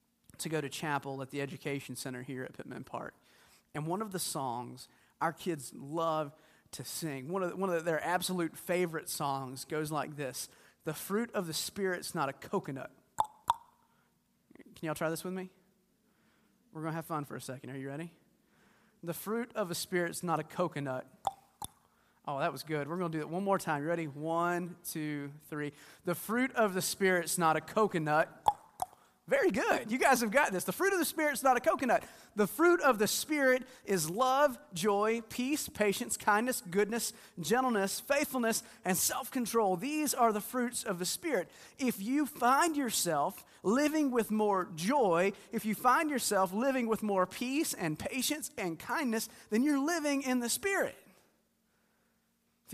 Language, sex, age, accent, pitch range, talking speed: English, male, 30-49, American, 160-235 Hz, 180 wpm